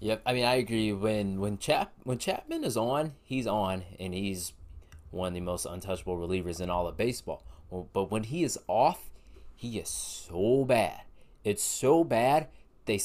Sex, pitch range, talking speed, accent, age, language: male, 90-130 Hz, 185 wpm, American, 20-39, English